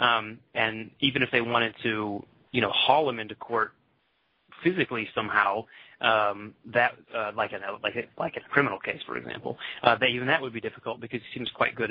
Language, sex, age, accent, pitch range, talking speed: English, male, 30-49, American, 110-130 Hz, 205 wpm